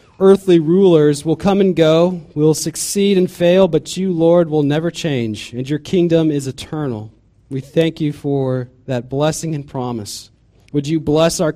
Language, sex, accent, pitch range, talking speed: English, male, American, 125-165 Hz, 175 wpm